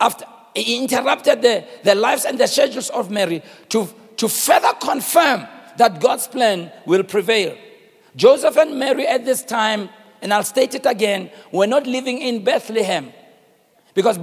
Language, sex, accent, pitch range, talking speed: English, male, South African, 215-295 Hz, 150 wpm